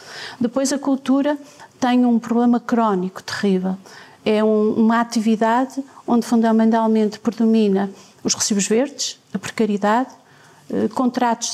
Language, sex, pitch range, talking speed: Portuguese, female, 215-255 Hz, 105 wpm